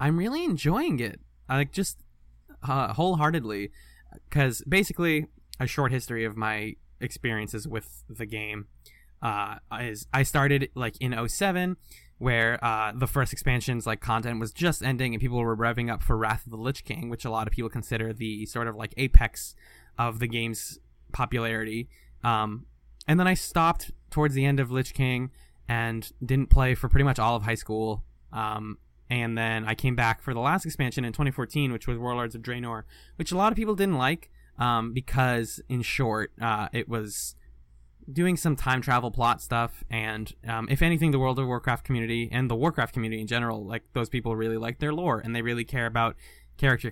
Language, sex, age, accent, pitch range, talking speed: English, male, 20-39, American, 110-130 Hz, 190 wpm